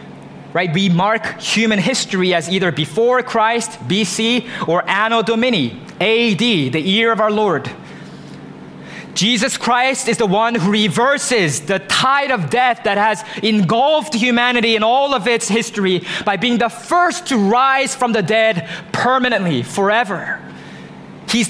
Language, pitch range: English, 195-250 Hz